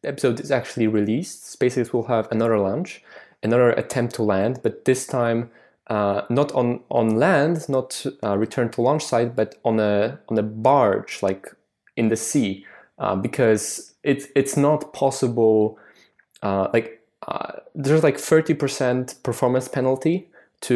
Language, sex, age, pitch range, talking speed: English, male, 20-39, 110-130 Hz, 155 wpm